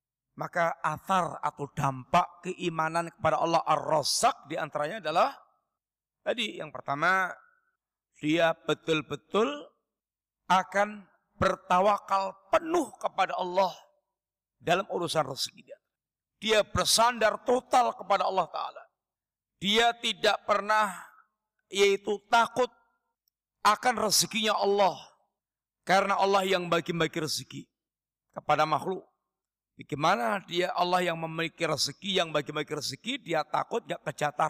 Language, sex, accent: Indonesian, male, native